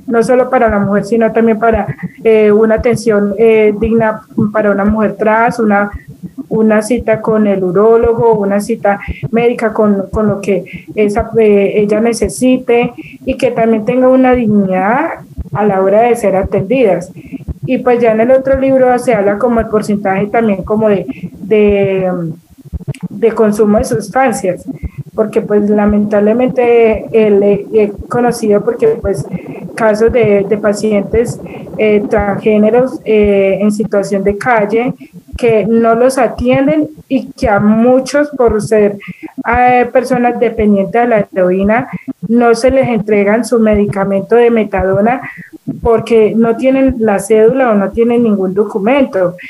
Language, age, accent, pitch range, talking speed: Spanish, 20-39, Colombian, 205-240 Hz, 145 wpm